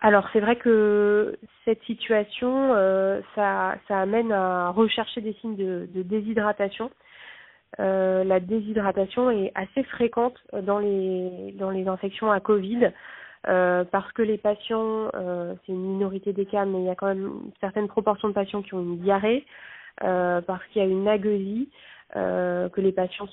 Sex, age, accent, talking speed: female, 20-39, French, 165 wpm